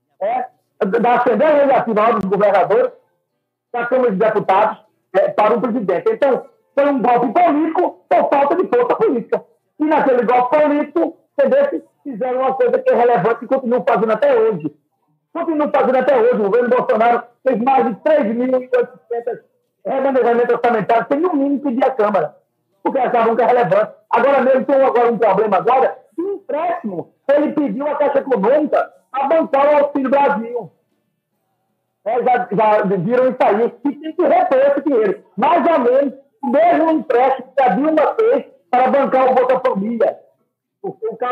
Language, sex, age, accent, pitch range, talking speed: Portuguese, male, 50-69, Brazilian, 235-300 Hz, 170 wpm